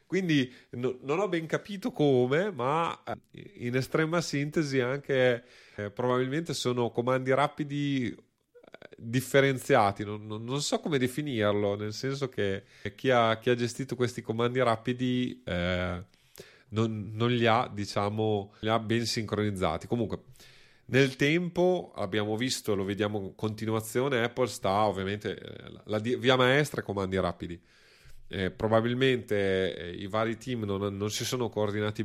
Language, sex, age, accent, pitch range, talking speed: Italian, male, 30-49, native, 100-130 Hz, 140 wpm